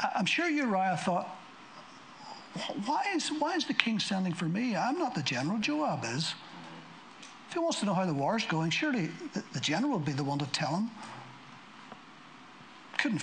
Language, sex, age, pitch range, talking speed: English, male, 60-79, 170-235 Hz, 175 wpm